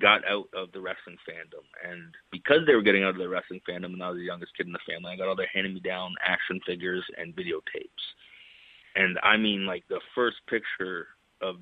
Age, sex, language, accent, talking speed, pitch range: 30-49, male, Italian, American, 225 wpm, 95-110 Hz